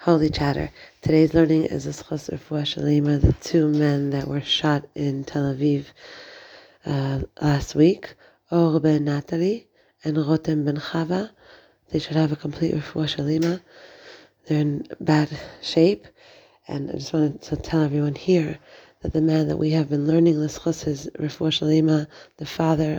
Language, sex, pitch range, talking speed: English, female, 145-165 Hz, 135 wpm